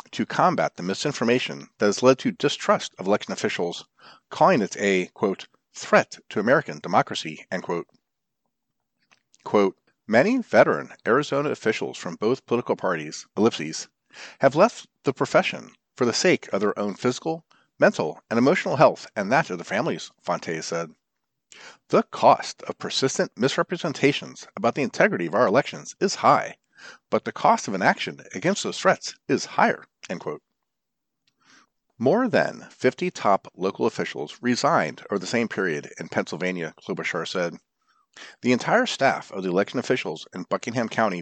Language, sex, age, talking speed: English, male, 50-69, 150 wpm